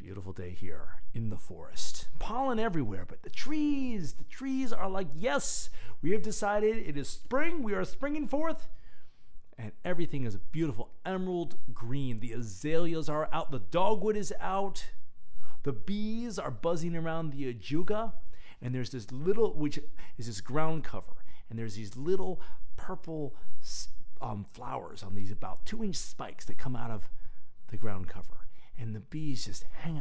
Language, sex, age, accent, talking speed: English, male, 40-59, American, 165 wpm